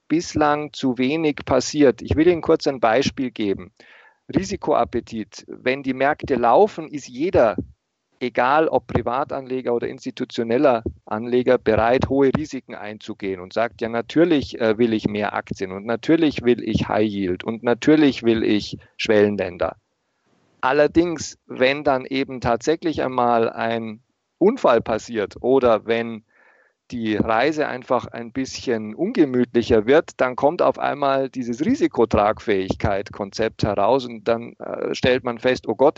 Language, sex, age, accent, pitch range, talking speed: German, male, 50-69, German, 110-145 Hz, 135 wpm